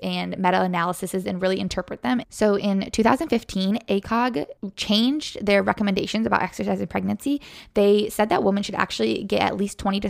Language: English